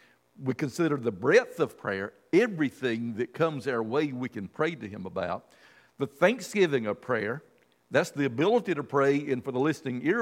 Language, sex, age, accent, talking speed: English, male, 50-69, American, 180 wpm